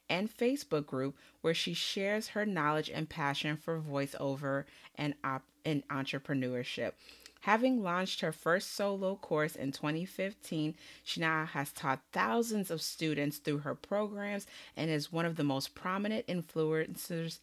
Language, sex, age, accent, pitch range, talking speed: English, female, 30-49, American, 145-190 Hz, 145 wpm